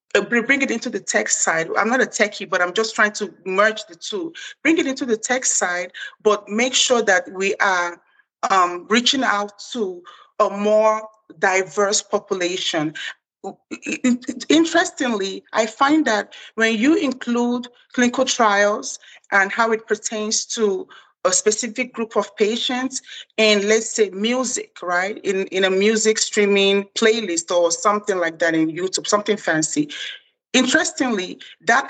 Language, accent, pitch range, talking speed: English, Nigerian, 185-245 Hz, 145 wpm